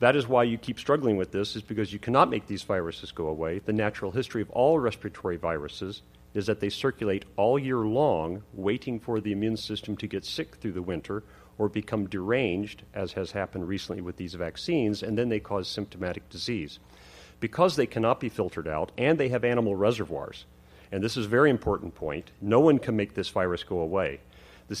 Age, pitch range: 40-59, 95-115 Hz